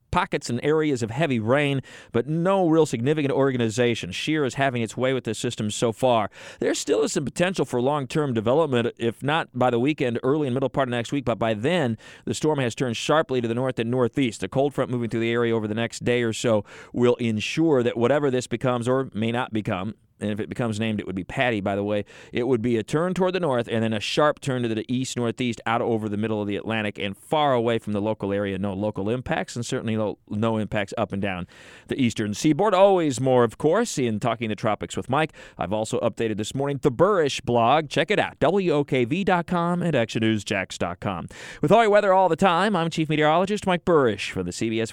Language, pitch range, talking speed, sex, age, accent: English, 115-150 Hz, 230 wpm, male, 40-59, American